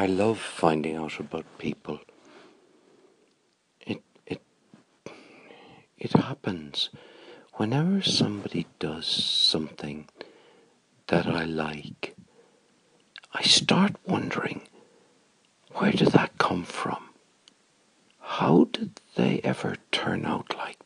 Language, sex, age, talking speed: English, male, 60-79, 90 wpm